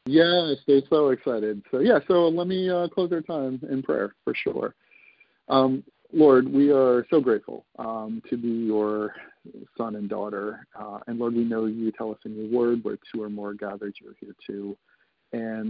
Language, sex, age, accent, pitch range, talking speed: English, male, 40-59, American, 110-140 Hz, 190 wpm